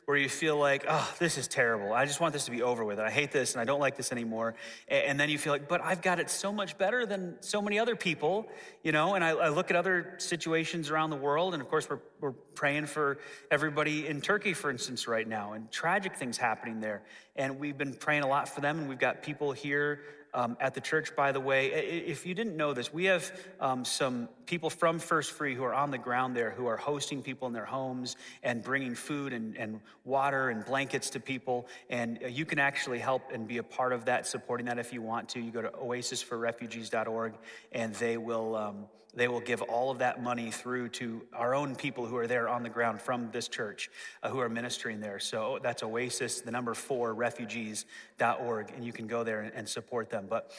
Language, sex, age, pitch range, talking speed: English, male, 30-49, 120-155 Hz, 230 wpm